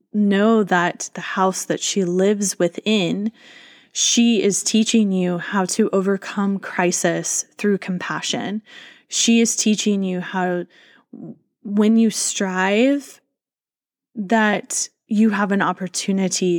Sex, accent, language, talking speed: female, American, English, 110 wpm